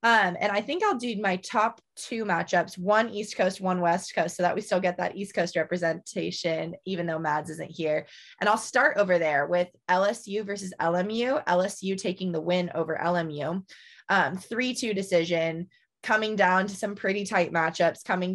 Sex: female